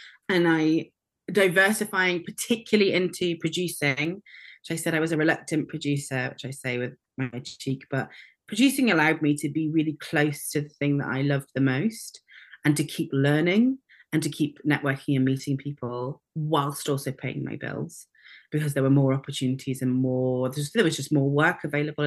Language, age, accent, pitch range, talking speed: English, 30-49, British, 135-155 Hz, 175 wpm